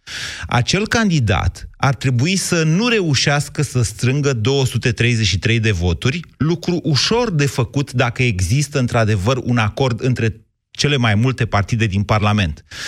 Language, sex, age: Romanian, male, 30-49